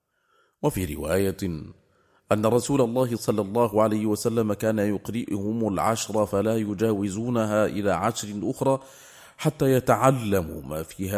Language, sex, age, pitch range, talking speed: English, male, 30-49, 90-110 Hz, 115 wpm